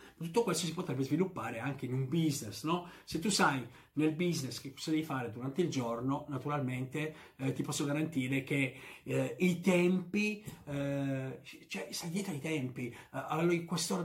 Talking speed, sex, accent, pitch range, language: 165 wpm, male, native, 125-160 Hz, Italian